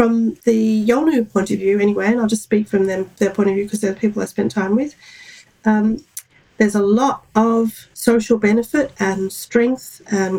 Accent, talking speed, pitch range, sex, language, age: Australian, 200 wpm, 205-235 Hz, female, English, 40-59